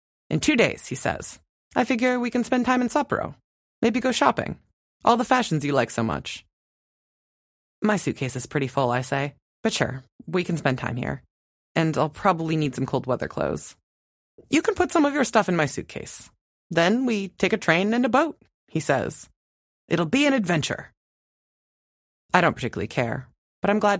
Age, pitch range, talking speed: 30-49, 125-205 Hz, 190 wpm